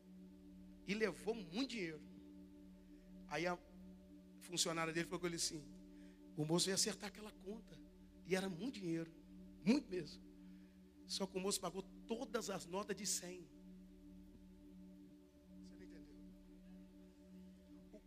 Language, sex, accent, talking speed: Portuguese, male, Brazilian, 125 wpm